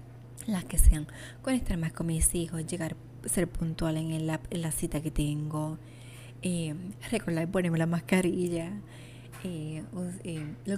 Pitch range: 125-190 Hz